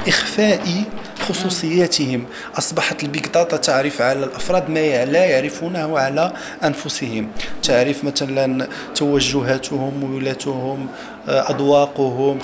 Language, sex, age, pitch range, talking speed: Arabic, male, 40-59, 135-165 Hz, 85 wpm